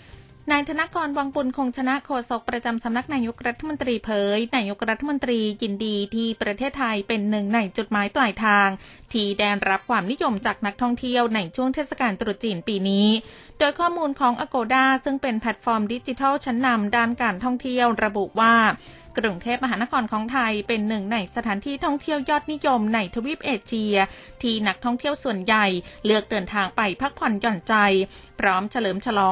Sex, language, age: female, Thai, 20-39